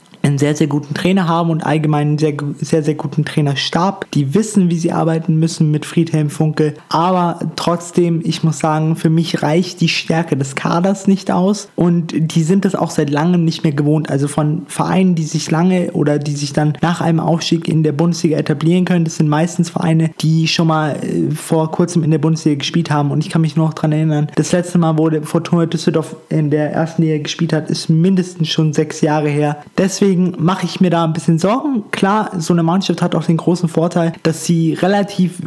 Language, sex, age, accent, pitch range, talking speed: German, male, 20-39, German, 150-170 Hz, 215 wpm